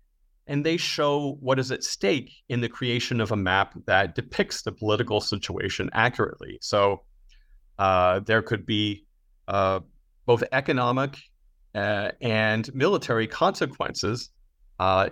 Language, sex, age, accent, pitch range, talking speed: English, male, 30-49, American, 100-125 Hz, 125 wpm